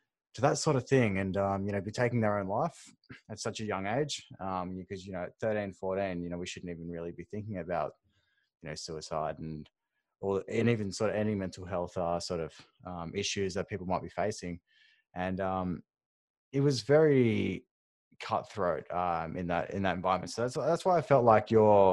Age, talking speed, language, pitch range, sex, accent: 20-39, 215 wpm, English, 90-110 Hz, male, Australian